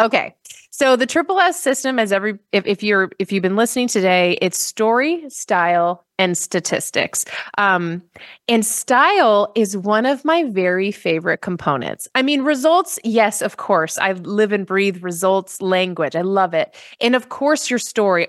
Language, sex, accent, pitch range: English, female, American, 190-275 Hz